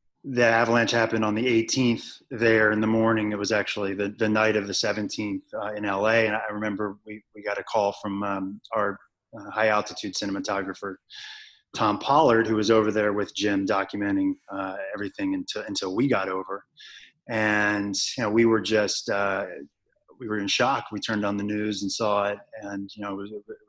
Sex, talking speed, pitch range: male, 195 wpm, 100-110 Hz